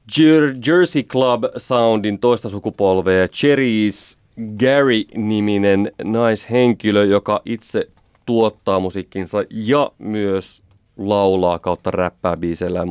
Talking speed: 90 wpm